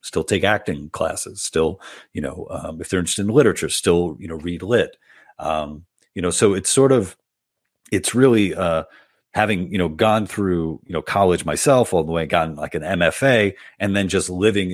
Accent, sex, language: American, male, English